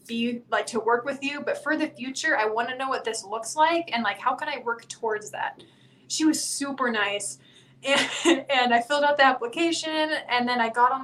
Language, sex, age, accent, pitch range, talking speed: English, female, 20-39, American, 225-290 Hz, 225 wpm